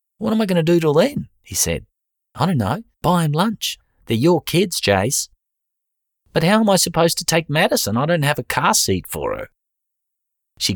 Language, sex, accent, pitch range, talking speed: English, male, Australian, 90-120 Hz, 205 wpm